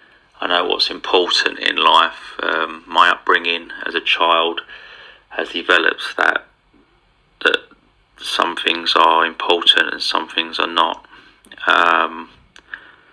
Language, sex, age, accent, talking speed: Swedish, male, 30-49, British, 120 wpm